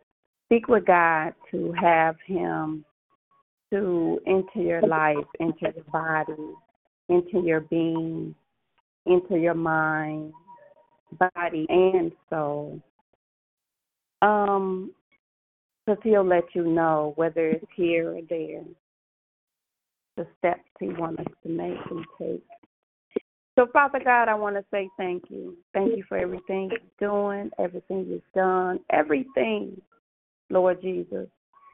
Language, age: English, 30-49